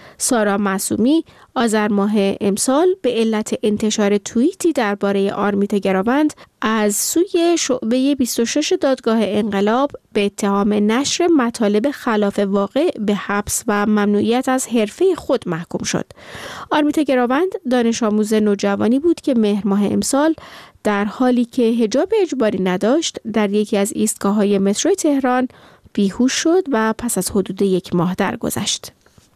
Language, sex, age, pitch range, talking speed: Persian, female, 30-49, 205-275 Hz, 130 wpm